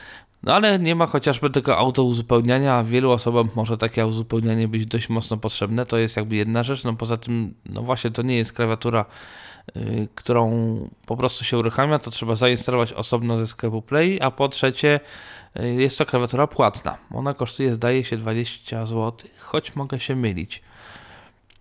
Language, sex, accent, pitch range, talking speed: Polish, male, native, 110-135 Hz, 170 wpm